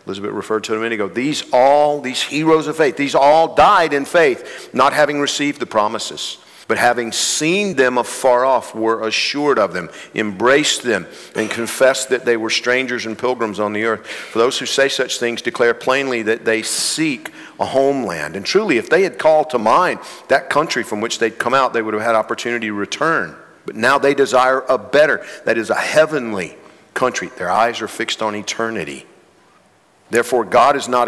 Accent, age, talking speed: American, 50-69, 195 wpm